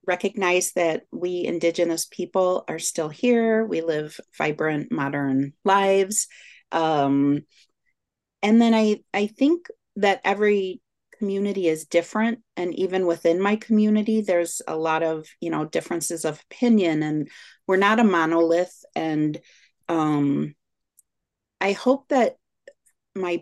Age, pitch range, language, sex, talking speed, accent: 40-59, 165-210 Hz, English, female, 125 wpm, American